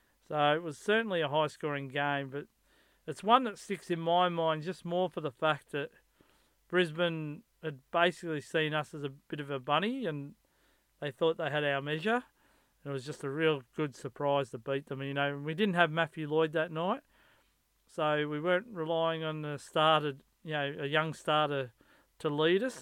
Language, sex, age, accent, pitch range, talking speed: English, male, 40-59, Australian, 150-180 Hz, 195 wpm